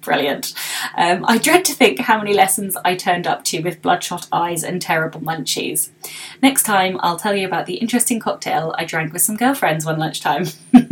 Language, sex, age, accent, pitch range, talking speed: English, female, 20-39, British, 175-255 Hz, 190 wpm